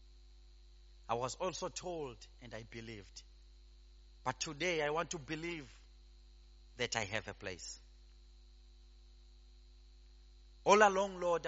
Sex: male